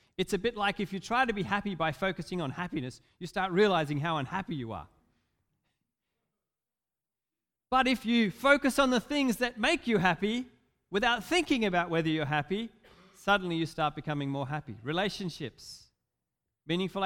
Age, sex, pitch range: 40-59, male, 155-220 Hz